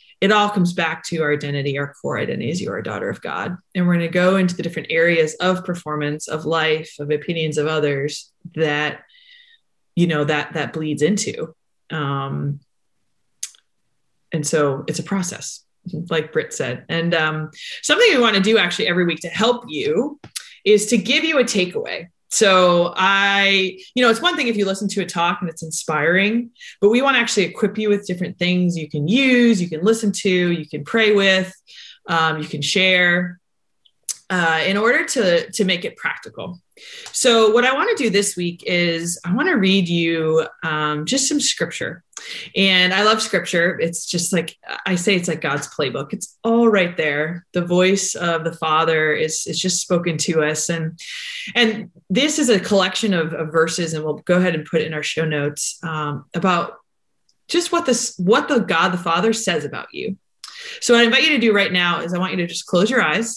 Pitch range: 160-215 Hz